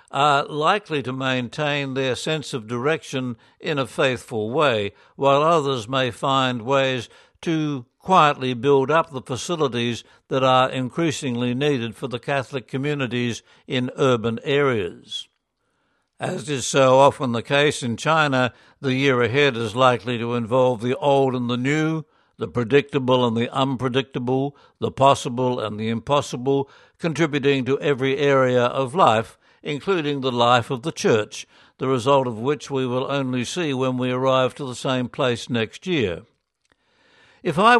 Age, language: 60-79, English